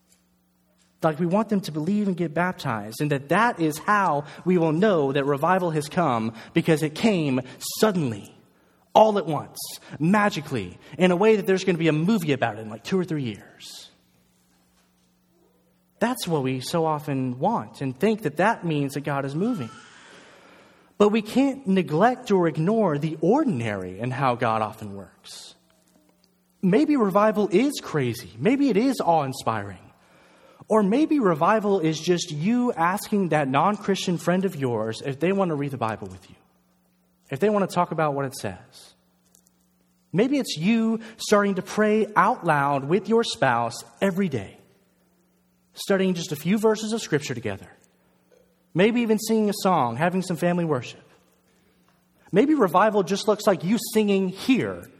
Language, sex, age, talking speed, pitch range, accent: English, male, 30-49, 165 wpm, 130-205 Hz, American